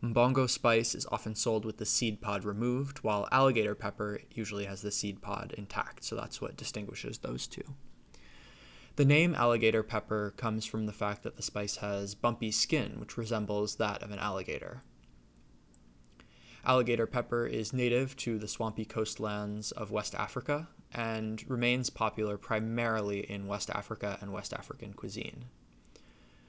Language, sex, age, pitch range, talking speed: English, male, 20-39, 100-120 Hz, 150 wpm